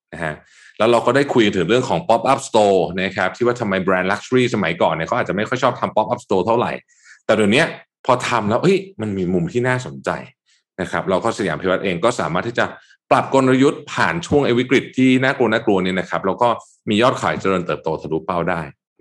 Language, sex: Thai, male